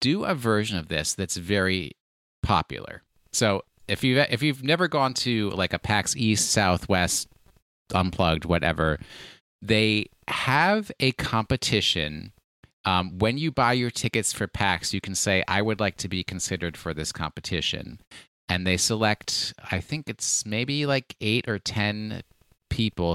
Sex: male